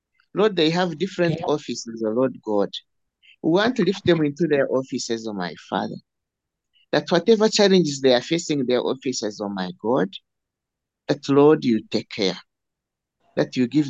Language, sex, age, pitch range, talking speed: English, male, 50-69, 125-170 Hz, 165 wpm